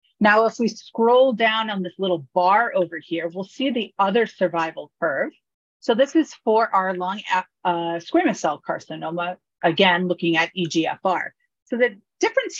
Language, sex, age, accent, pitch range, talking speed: English, female, 40-59, American, 170-225 Hz, 160 wpm